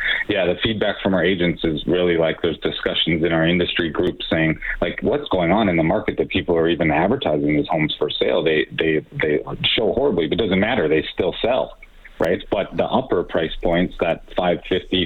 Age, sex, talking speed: 40-59, male, 205 wpm